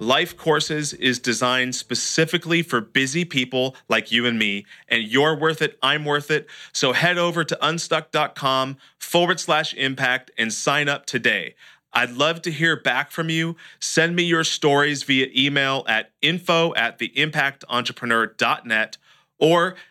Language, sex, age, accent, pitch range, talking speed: English, male, 40-59, American, 120-155 Hz, 150 wpm